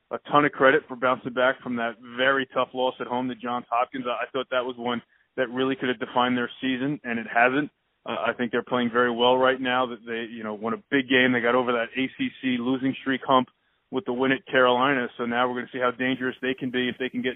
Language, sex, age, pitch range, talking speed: English, male, 20-39, 125-140 Hz, 265 wpm